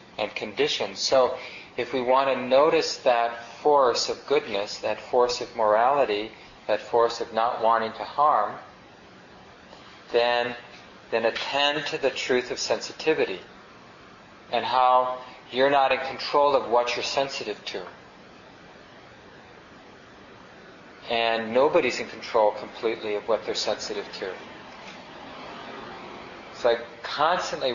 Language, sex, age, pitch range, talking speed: English, male, 40-59, 115-140 Hz, 120 wpm